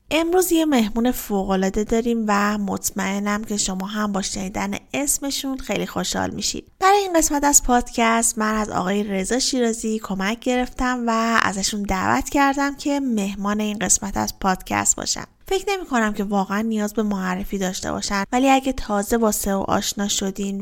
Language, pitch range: Persian, 200-250 Hz